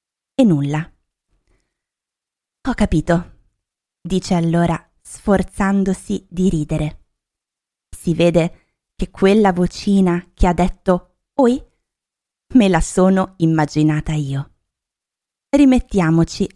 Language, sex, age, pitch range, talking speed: Italian, female, 20-39, 170-210 Hz, 85 wpm